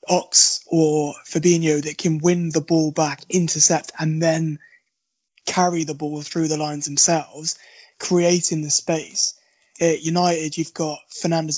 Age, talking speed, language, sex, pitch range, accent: 20-39, 140 wpm, English, male, 155-175 Hz, British